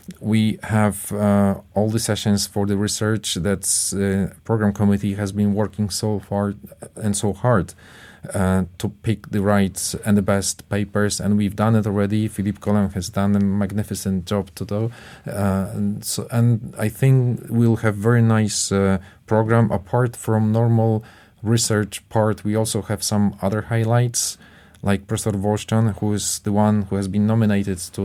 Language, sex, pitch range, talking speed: English, male, 100-110 Hz, 170 wpm